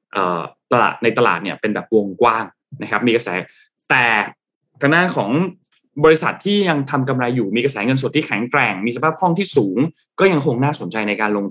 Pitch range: 105-145 Hz